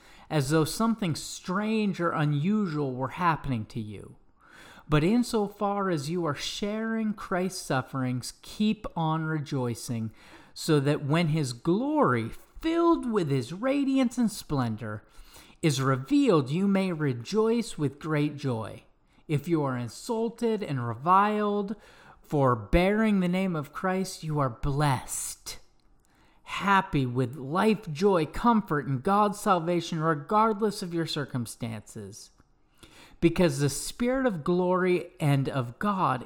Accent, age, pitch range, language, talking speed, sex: American, 40-59, 135-200 Hz, English, 125 wpm, male